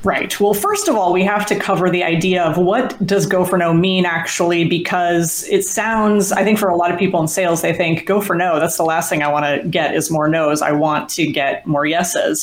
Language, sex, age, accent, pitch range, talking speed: English, female, 30-49, American, 170-200 Hz, 255 wpm